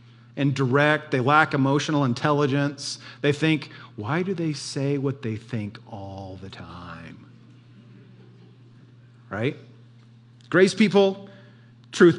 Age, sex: 40-59, male